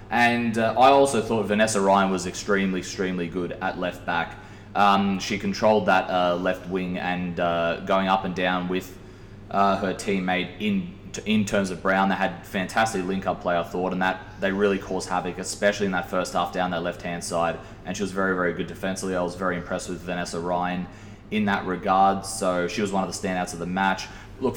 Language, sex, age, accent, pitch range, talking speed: English, male, 20-39, Australian, 90-105 Hz, 210 wpm